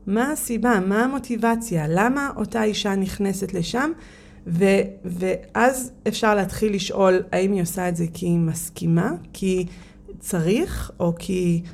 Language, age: Hebrew, 30-49